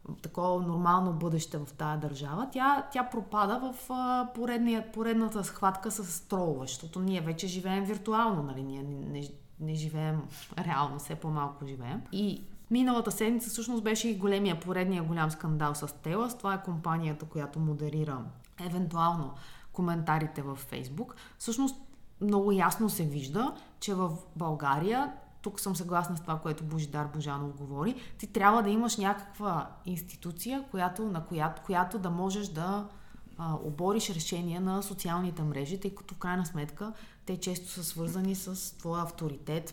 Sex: female